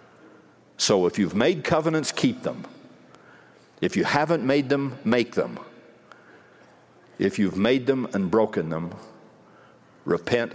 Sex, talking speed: male, 125 wpm